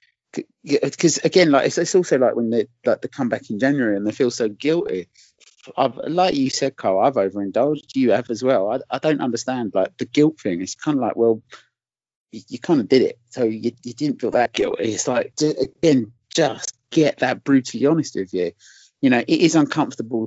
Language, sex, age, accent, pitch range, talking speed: English, male, 30-49, British, 110-140 Hz, 215 wpm